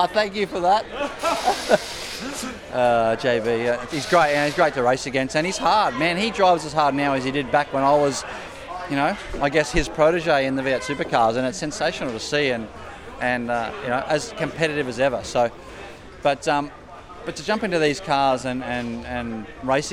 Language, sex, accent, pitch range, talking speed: English, male, Australian, 125-155 Hz, 205 wpm